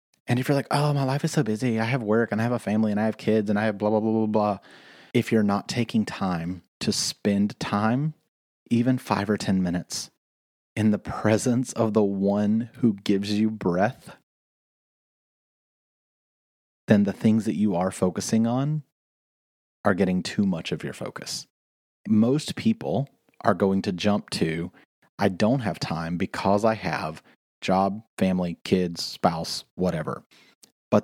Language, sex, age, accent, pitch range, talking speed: English, male, 30-49, American, 95-115 Hz, 170 wpm